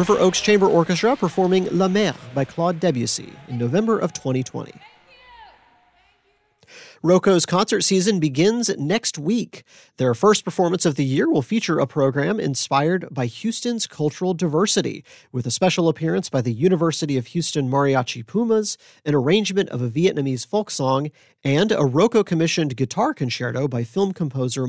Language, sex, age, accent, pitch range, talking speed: English, male, 40-59, American, 135-195 Hz, 150 wpm